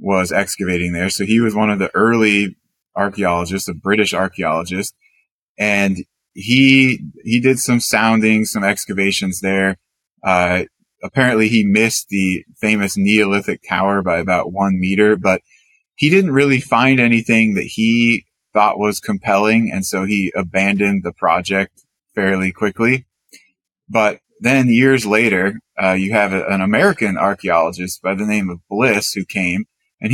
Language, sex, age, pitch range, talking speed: English, male, 20-39, 95-110 Hz, 145 wpm